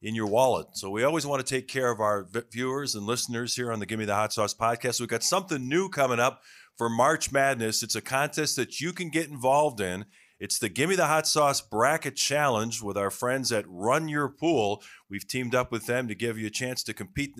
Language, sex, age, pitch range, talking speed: English, male, 40-59, 110-145 Hz, 235 wpm